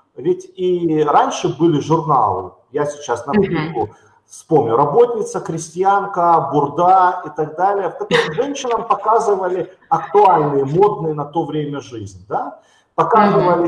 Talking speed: 120 wpm